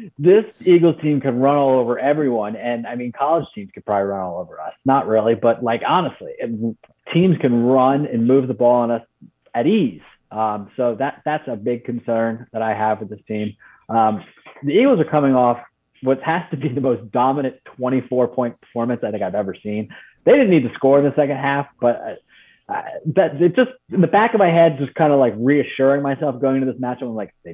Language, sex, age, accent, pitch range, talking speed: English, male, 30-49, American, 110-140 Hz, 225 wpm